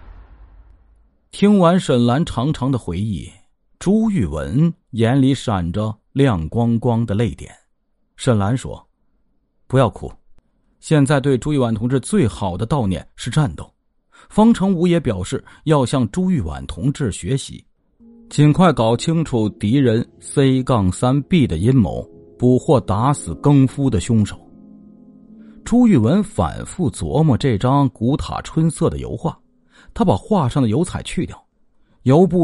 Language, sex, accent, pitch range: Chinese, male, native, 105-150 Hz